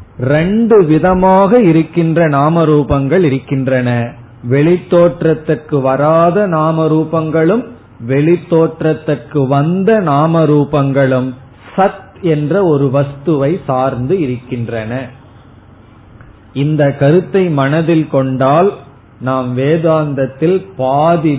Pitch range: 130-165 Hz